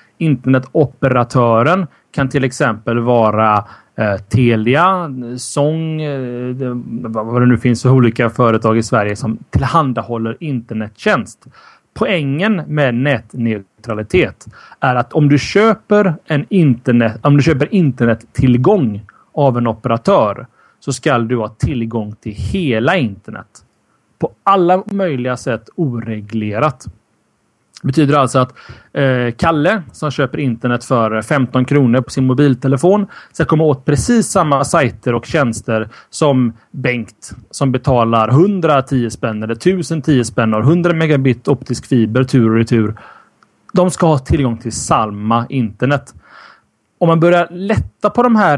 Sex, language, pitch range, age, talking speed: male, Swedish, 115-155 Hz, 30-49, 120 wpm